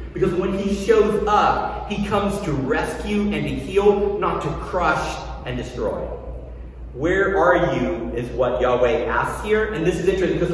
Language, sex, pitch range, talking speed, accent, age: English, male, 135-180 Hz, 170 wpm, American, 40-59